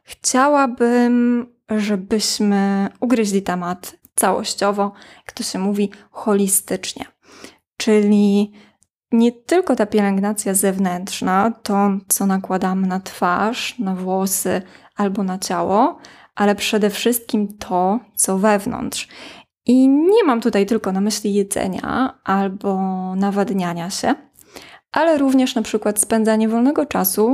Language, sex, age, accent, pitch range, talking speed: Polish, female, 20-39, native, 195-240 Hz, 110 wpm